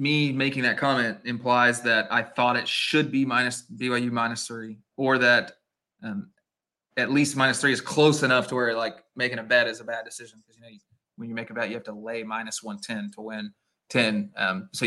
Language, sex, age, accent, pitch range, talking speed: English, male, 20-39, American, 120-145 Hz, 220 wpm